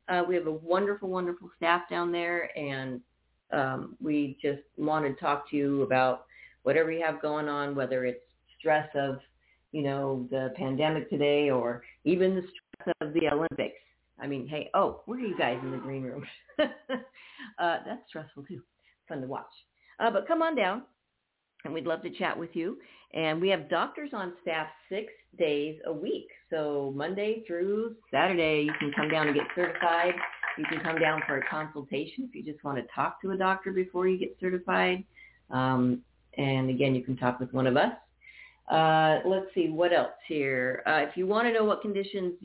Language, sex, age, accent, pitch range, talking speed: English, female, 50-69, American, 145-185 Hz, 190 wpm